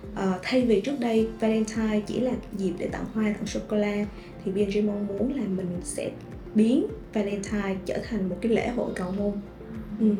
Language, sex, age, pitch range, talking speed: Vietnamese, female, 20-39, 195-240 Hz, 195 wpm